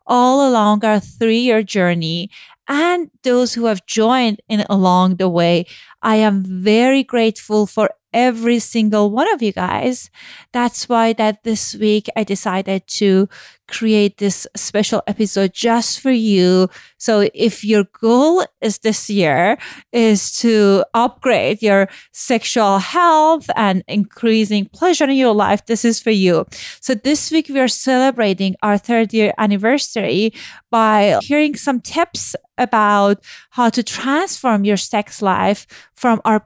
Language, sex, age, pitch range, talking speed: English, female, 30-49, 205-245 Hz, 145 wpm